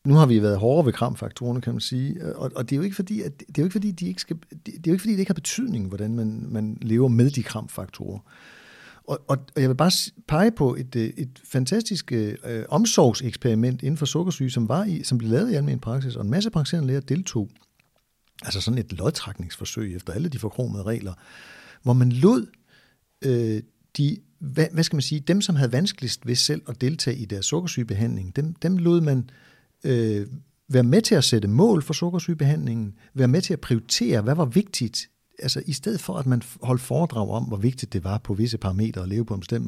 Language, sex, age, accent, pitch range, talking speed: Danish, male, 60-79, native, 115-165 Hz, 195 wpm